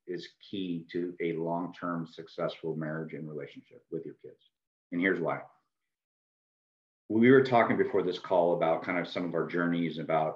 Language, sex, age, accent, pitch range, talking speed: English, male, 40-59, American, 85-130 Hz, 170 wpm